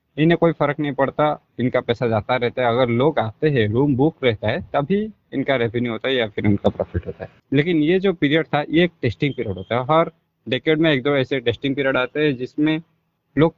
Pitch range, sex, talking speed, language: 120-150 Hz, male, 230 wpm, Hindi